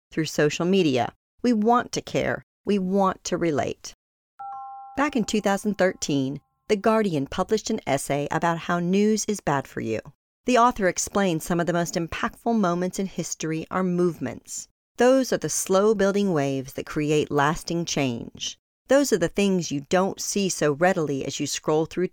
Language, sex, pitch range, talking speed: English, female, 150-210 Hz, 170 wpm